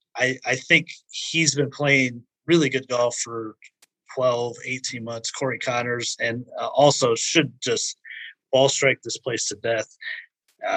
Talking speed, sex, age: 150 wpm, male, 30-49